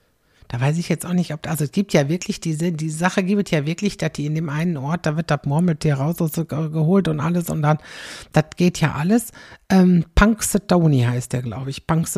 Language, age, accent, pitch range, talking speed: German, 60-79, German, 150-195 Hz, 235 wpm